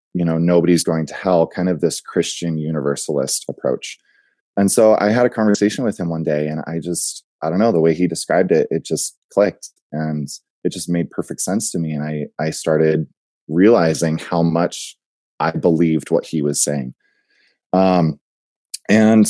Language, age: English, 20-39